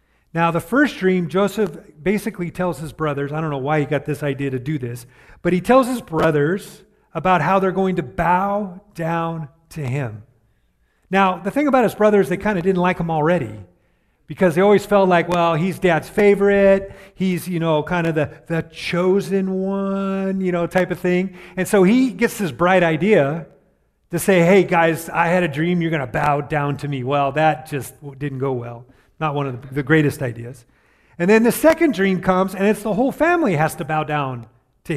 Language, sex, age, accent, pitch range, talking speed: English, male, 40-59, American, 145-195 Hz, 205 wpm